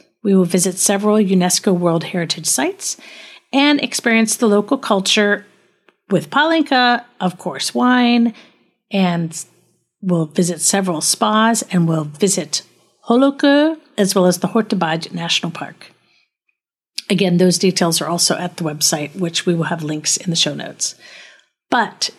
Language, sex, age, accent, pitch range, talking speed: English, female, 50-69, American, 175-220 Hz, 140 wpm